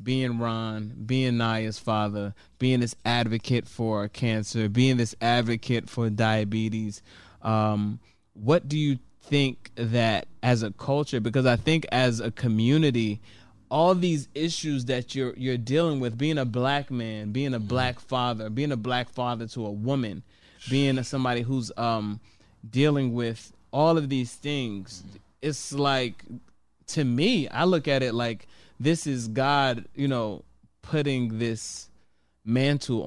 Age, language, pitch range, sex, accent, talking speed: 20-39, English, 110-130 Hz, male, American, 145 wpm